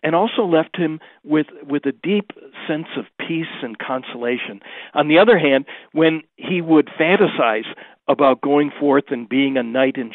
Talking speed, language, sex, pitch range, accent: 170 wpm, English, male, 125-160 Hz, American